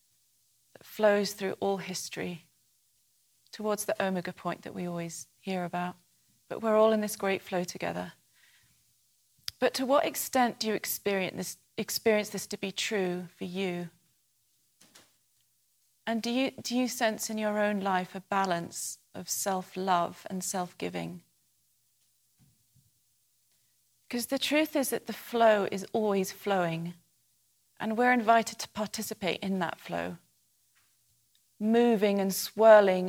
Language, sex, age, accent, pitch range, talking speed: English, female, 40-59, British, 170-215 Hz, 135 wpm